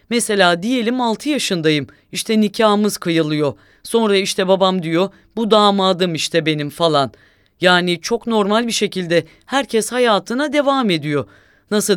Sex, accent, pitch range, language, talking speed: female, Turkish, 160-225 Hz, English, 130 wpm